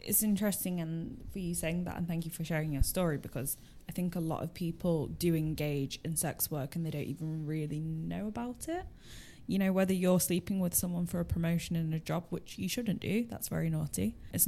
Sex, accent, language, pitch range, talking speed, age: female, British, English, 155-180 Hz, 230 wpm, 10-29